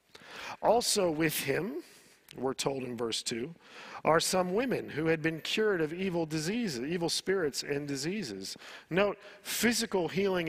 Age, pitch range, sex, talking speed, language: 50-69, 150-195 Hz, male, 145 wpm, English